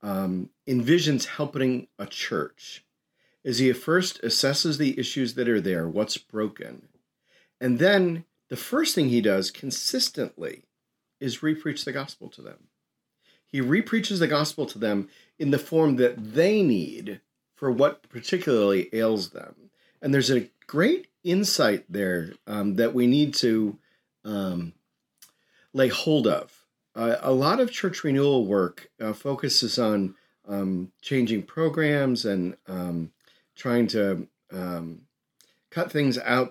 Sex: male